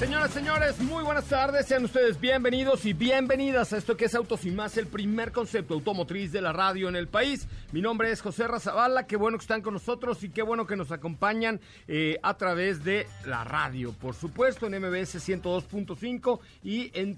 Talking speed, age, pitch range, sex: 205 wpm, 50-69, 155-225 Hz, male